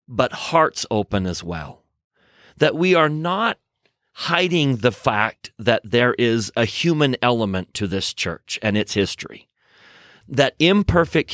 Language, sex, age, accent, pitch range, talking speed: English, male, 40-59, American, 115-155 Hz, 140 wpm